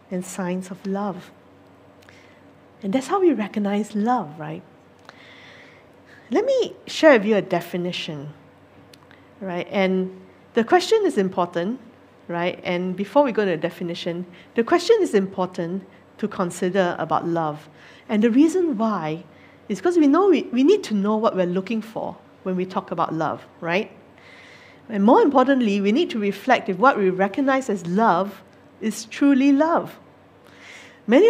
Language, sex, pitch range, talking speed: English, female, 180-240 Hz, 155 wpm